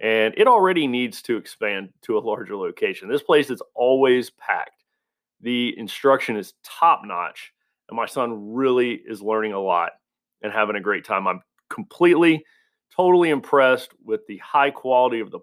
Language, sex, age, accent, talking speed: English, male, 40-59, American, 165 wpm